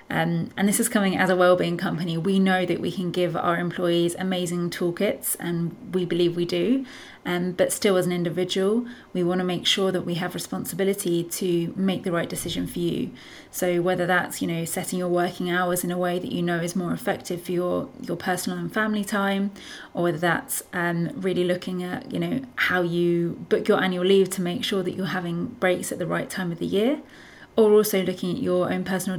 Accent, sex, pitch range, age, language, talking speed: British, female, 175-190 Hz, 30-49, English, 220 wpm